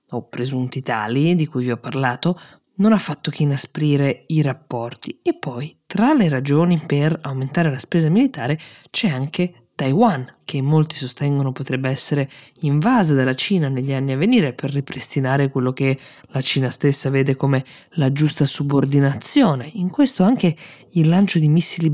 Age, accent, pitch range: 20-39, native, 135-155 Hz